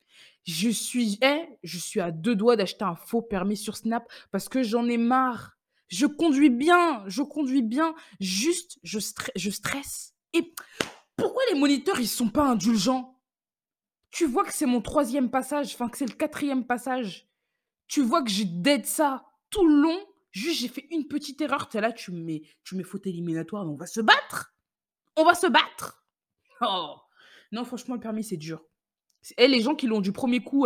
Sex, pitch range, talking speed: female, 195-280 Hz, 190 wpm